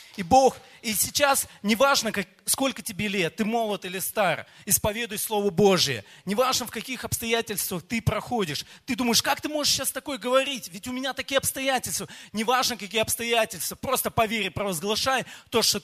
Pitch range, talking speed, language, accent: 210-260 Hz, 170 wpm, Russian, native